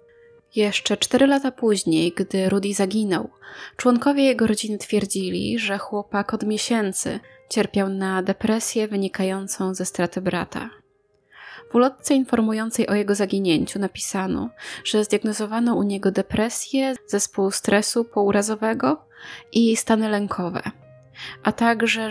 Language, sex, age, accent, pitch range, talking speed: Polish, female, 20-39, native, 195-235 Hz, 115 wpm